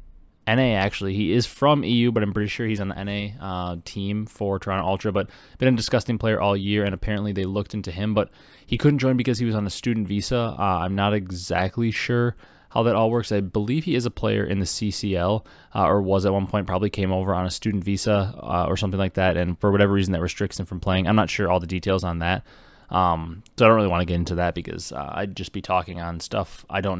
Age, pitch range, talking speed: 20-39, 95-110 Hz, 260 wpm